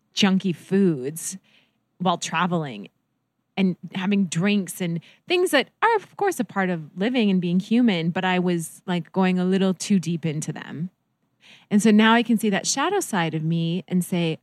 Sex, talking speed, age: female, 185 wpm, 20-39